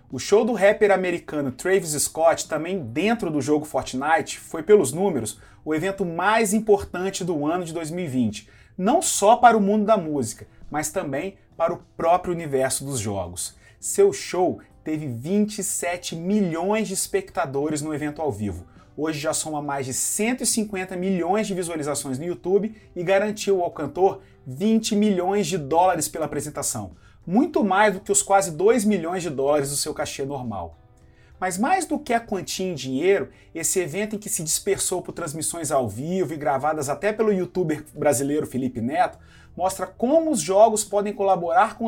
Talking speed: 170 wpm